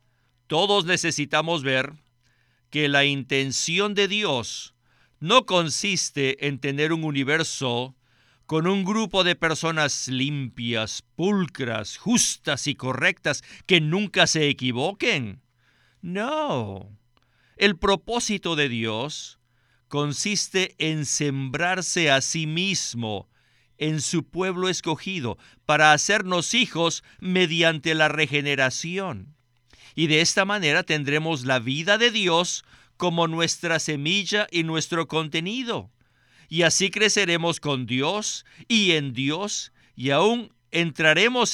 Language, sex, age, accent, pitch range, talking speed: Spanish, male, 50-69, Mexican, 125-180 Hz, 110 wpm